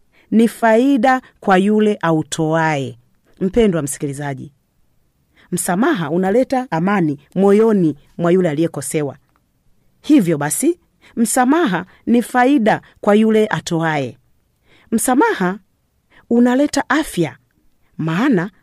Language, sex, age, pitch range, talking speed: Swahili, female, 40-59, 155-220 Hz, 85 wpm